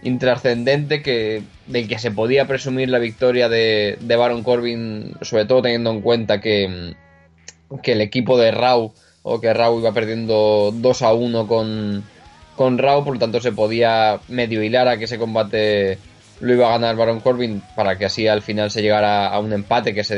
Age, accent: 20-39, Spanish